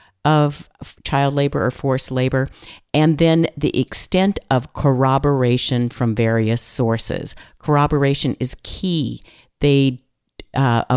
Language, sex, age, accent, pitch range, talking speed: English, female, 50-69, American, 115-145 Hz, 110 wpm